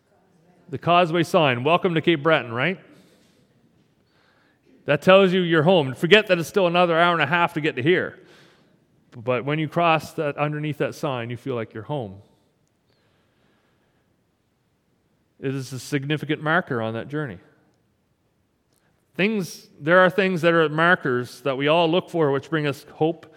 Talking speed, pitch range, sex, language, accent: 160 wpm, 135-170 Hz, male, English, American